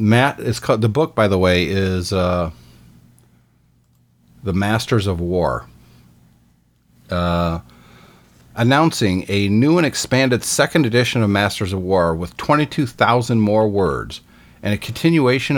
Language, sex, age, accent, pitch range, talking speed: English, male, 40-59, American, 90-120 Hz, 125 wpm